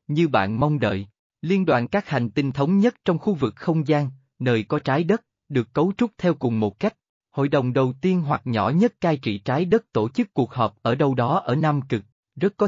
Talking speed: 235 wpm